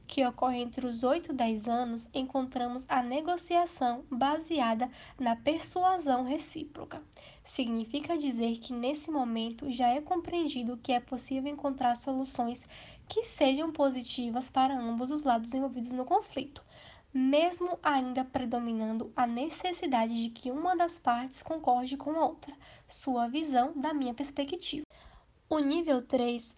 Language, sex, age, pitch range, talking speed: Portuguese, female, 10-29, 245-300 Hz, 135 wpm